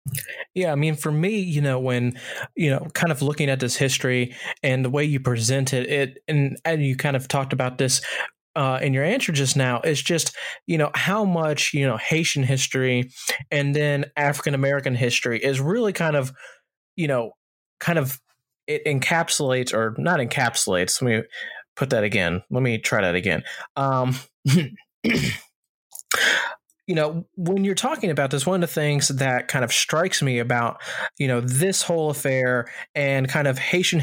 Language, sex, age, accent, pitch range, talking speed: English, male, 20-39, American, 125-150 Hz, 180 wpm